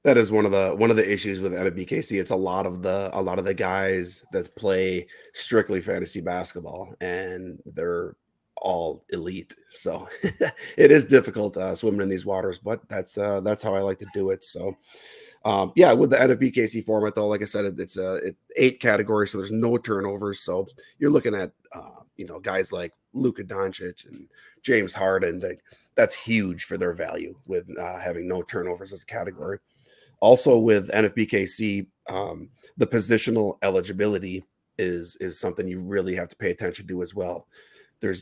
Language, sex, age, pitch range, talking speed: English, male, 30-49, 95-115 Hz, 185 wpm